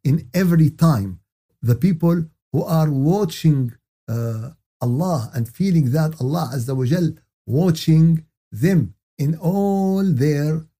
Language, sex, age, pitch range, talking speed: Arabic, male, 50-69, 120-160 Hz, 120 wpm